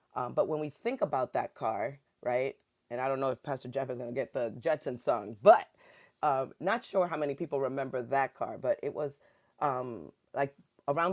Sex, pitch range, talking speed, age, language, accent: female, 135-180 Hz, 205 wpm, 30-49, English, American